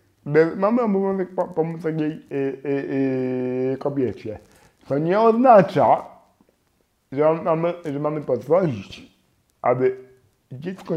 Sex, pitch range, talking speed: male, 130-175 Hz, 75 wpm